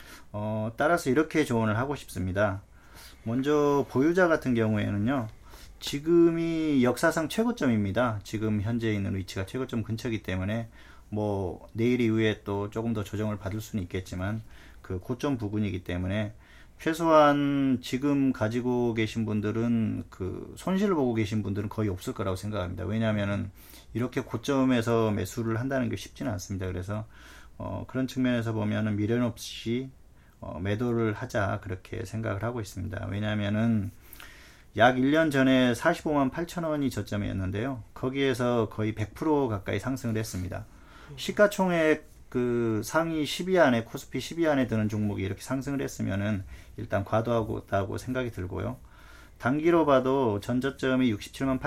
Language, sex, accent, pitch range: Korean, male, native, 105-130 Hz